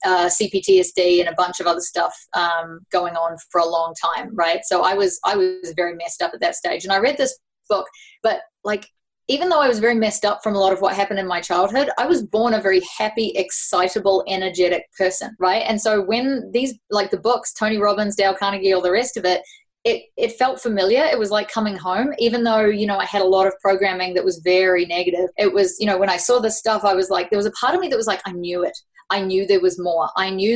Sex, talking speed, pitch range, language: female, 255 wpm, 185-215 Hz, English